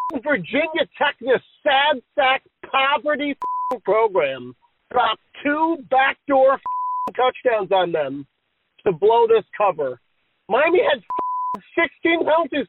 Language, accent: English, American